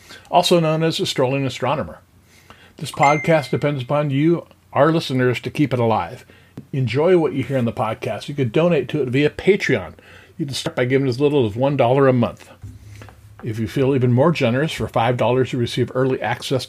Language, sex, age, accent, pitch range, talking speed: English, male, 50-69, American, 115-145 Hz, 195 wpm